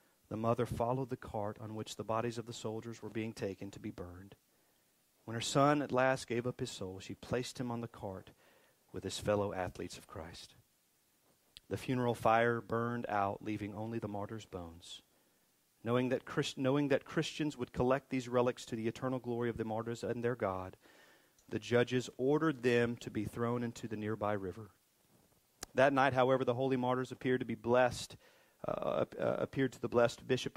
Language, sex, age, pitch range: English, male, 40-59, 105-125 Hz